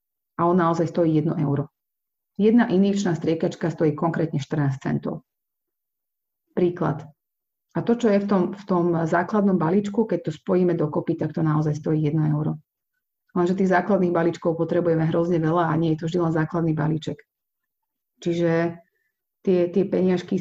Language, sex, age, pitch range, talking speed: Slovak, female, 30-49, 165-190 Hz, 160 wpm